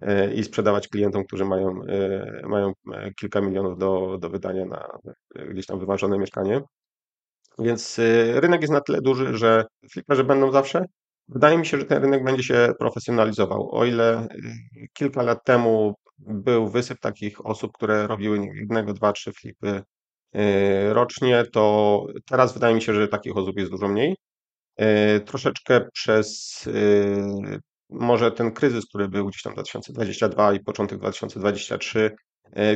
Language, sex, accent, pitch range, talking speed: Polish, male, native, 100-115 Hz, 135 wpm